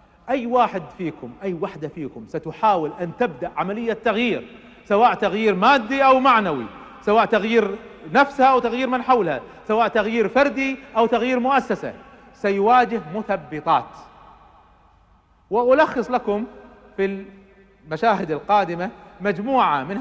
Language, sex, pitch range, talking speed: Arabic, male, 185-265 Hz, 115 wpm